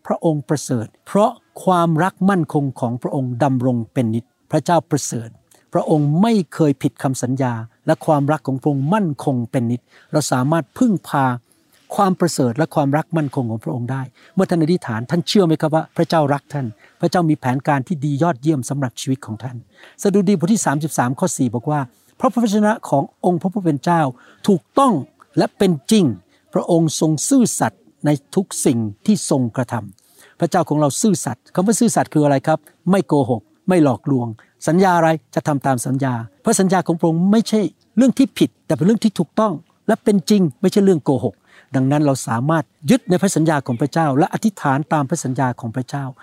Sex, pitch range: male, 135-180 Hz